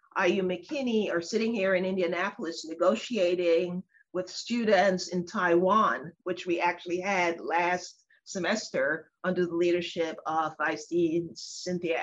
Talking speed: 115 wpm